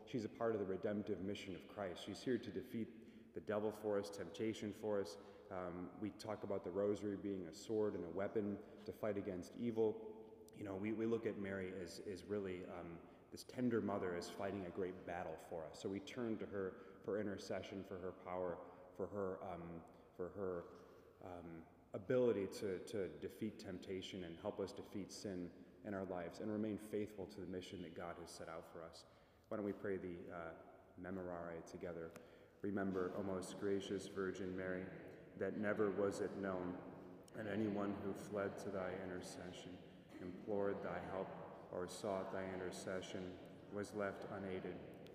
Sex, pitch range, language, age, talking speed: male, 90-100 Hz, English, 30-49, 180 wpm